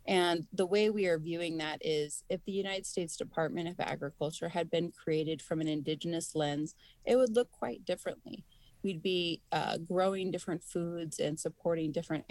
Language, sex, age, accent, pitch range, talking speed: English, female, 30-49, American, 155-185 Hz, 175 wpm